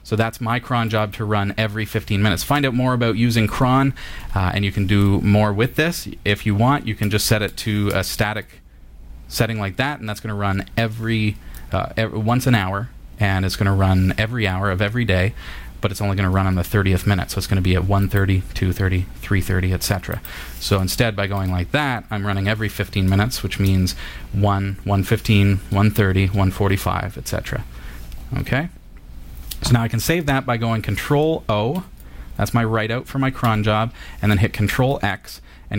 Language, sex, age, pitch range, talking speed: English, male, 30-49, 95-115 Hz, 205 wpm